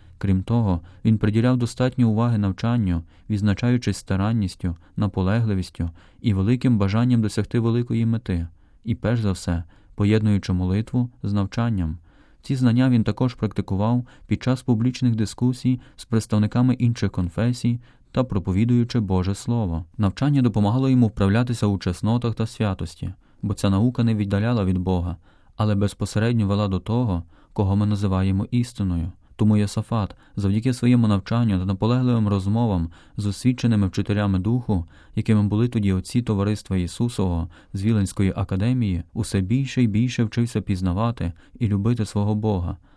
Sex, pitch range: male, 95-120 Hz